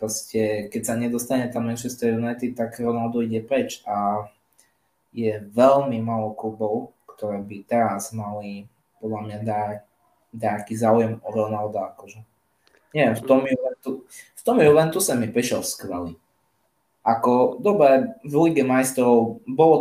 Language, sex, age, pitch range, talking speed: Slovak, male, 20-39, 110-130 Hz, 125 wpm